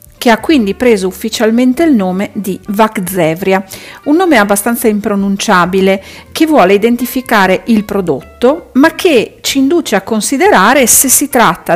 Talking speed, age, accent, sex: 140 wpm, 50-69, native, female